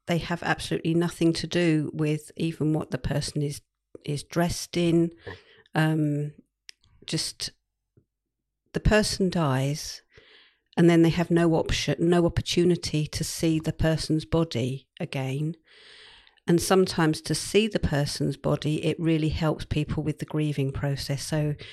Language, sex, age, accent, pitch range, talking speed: English, female, 50-69, British, 150-175 Hz, 140 wpm